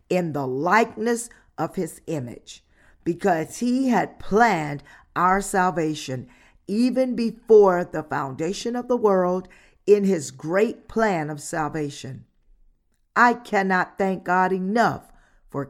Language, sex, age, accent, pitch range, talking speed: English, female, 50-69, American, 160-225 Hz, 120 wpm